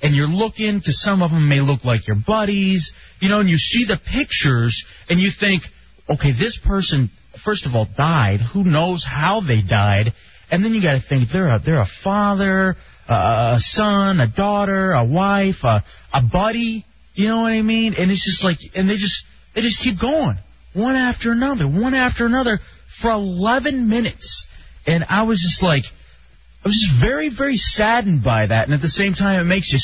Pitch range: 135-205 Hz